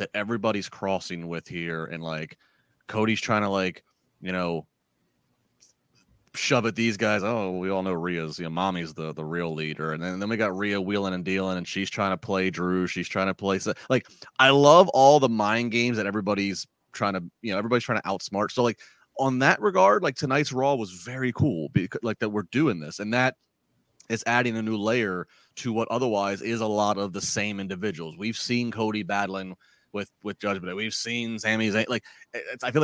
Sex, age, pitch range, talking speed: male, 30-49, 95-125 Hz, 210 wpm